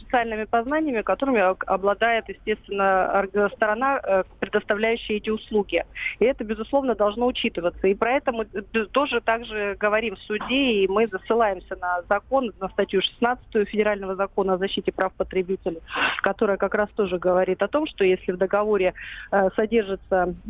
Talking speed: 145 wpm